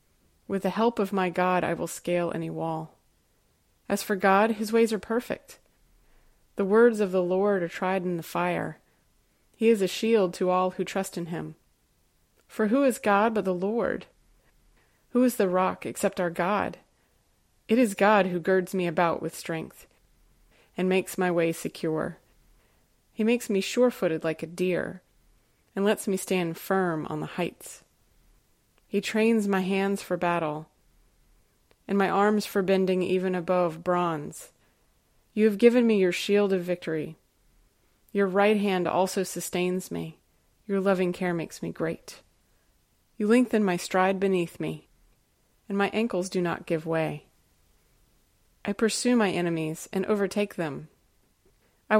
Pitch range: 175-205 Hz